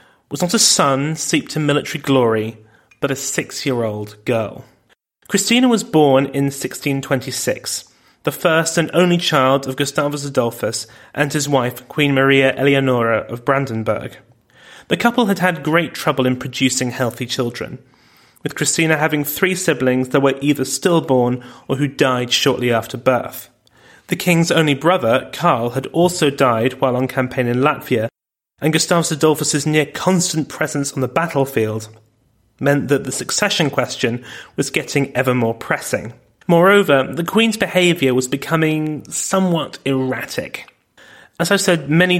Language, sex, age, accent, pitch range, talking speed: English, male, 30-49, British, 130-160 Hz, 145 wpm